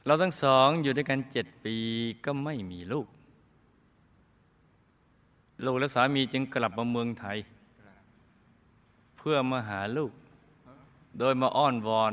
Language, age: Thai, 20-39